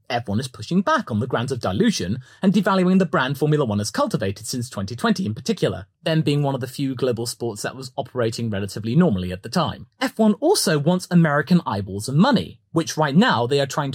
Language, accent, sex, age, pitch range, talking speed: English, British, male, 30-49, 125-210 Hz, 225 wpm